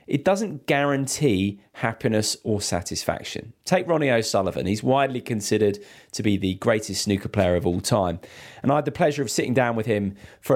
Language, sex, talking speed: English, male, 180 wpm